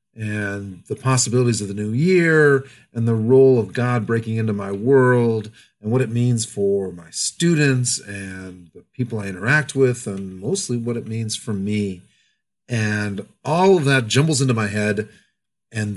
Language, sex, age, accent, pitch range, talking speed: English, male, 40-59, American, 110-145 Hz, 170 wpm